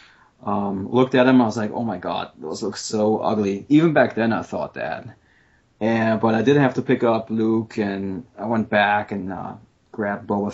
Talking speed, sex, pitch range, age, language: 210 wpm, male, 100-120 Hz, 30-49, English